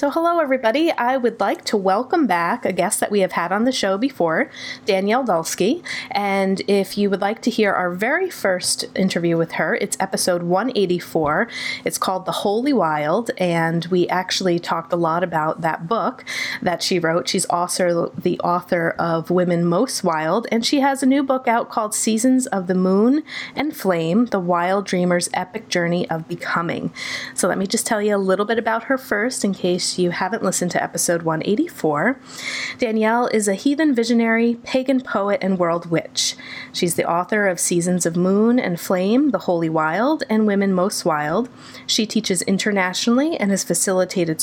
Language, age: English, 30-49